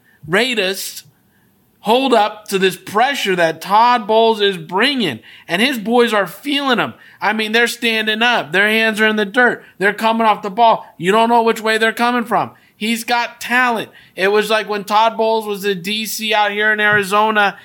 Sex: male